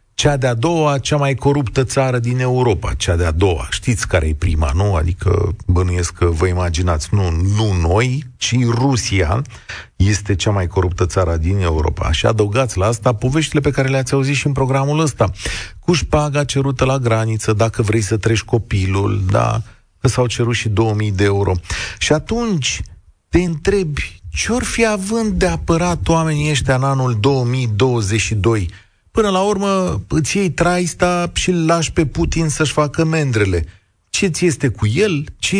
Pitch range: 100-150 Hz